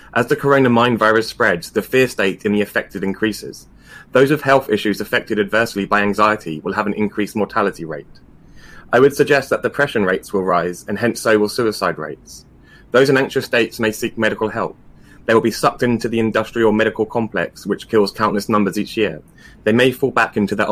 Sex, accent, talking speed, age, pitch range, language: male, British, 195 wpm, 20-39, 100-115 Hz, English